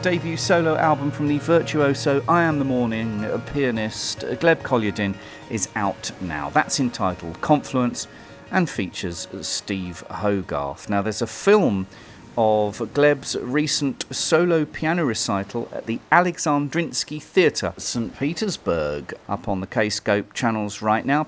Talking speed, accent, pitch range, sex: 130 wpm, British, 100-145 Hz, male